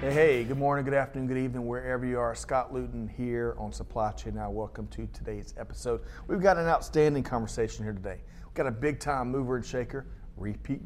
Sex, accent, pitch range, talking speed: male, American, 105-130 Hz, 200 wpm